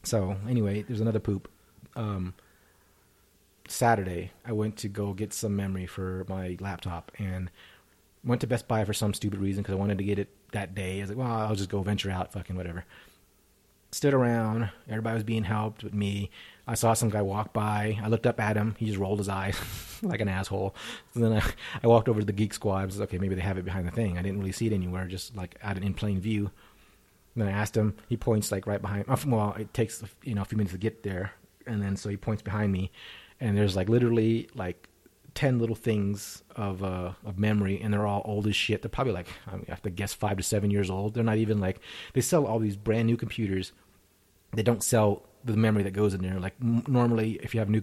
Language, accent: English, American